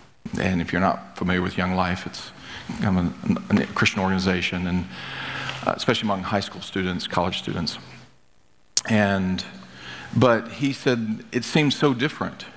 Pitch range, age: 95-120 Hz, 40-59